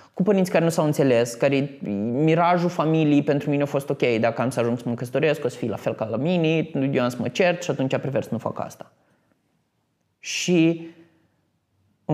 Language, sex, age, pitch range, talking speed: Romanian, male, 20-39, 130-185 Hz, 210 wpm